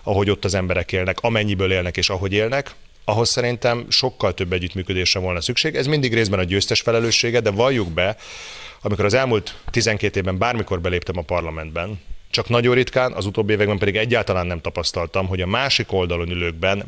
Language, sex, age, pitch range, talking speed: Hungarian, male, 30-49, 90-115 Hz, 180 wpm